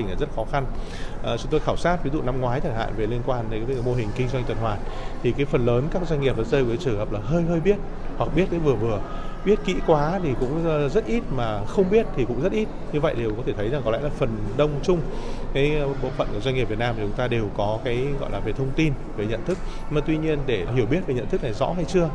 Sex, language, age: male, Vietnamese, 20-39